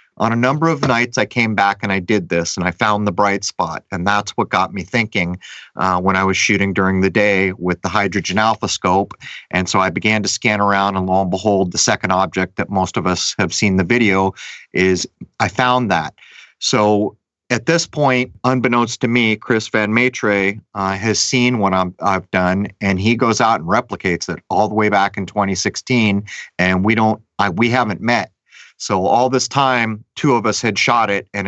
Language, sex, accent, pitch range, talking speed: English, male, American, 100-120 Hz, 210 wpm